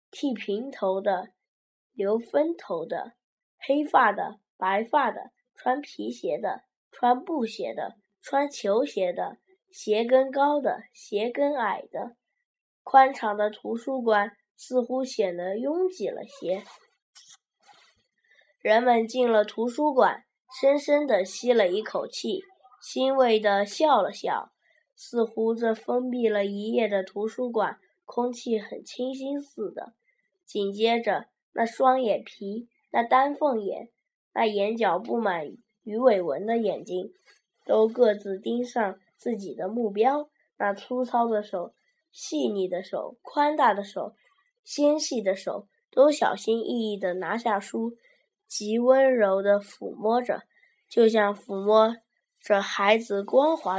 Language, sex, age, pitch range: Chinese, female, 10-29, 210-270 Hz